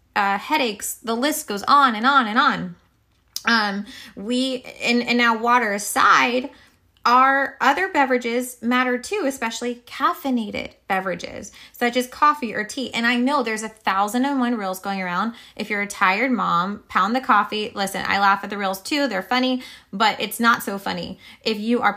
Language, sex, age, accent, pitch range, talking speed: English, female, 20-39, American, 200-255 Hz, 180 wpm